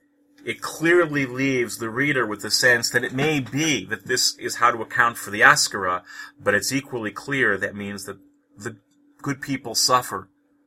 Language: English